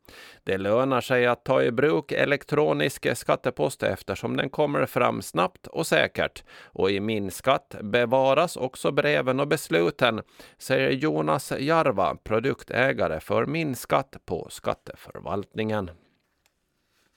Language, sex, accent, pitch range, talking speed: Swedish, male, native, 105-160 Hz, 110 wpm